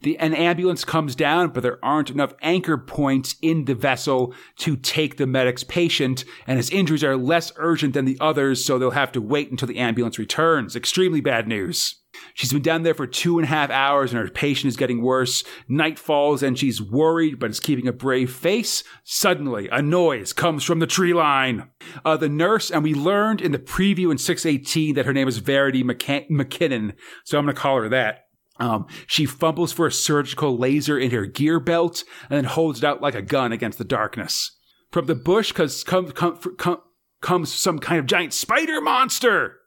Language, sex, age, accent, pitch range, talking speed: English, male, 40-59, American, 135-175 Hz, 205 wpm